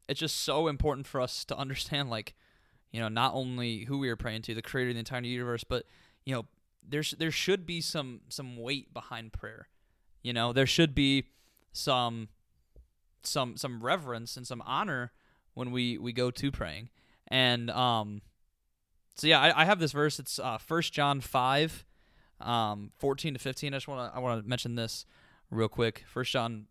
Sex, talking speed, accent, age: male, 190 wpm, American, 20-39